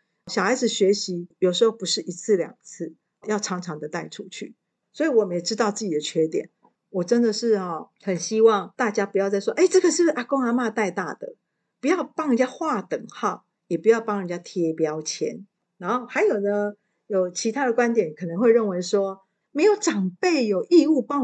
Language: Chinese